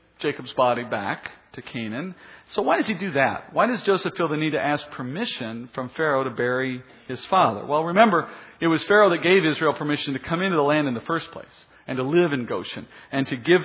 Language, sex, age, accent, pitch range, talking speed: English, male, 50-69, American, 135-180 Hz, 230 wpm